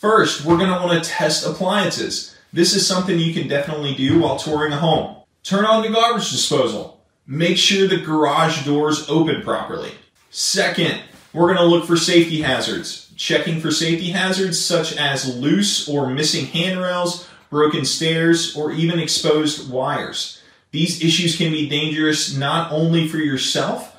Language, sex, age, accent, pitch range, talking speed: English, male, 20-39, American, 145-170 Hz, 155 wpm